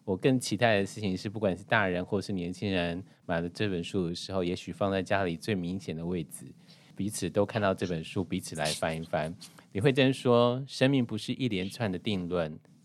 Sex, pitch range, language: male, 90-125 Hz, Chinese